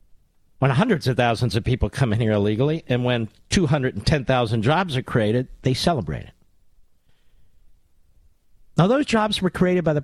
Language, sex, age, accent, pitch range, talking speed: English, male, 50-69, American, 145-230 Hz, 180 wpm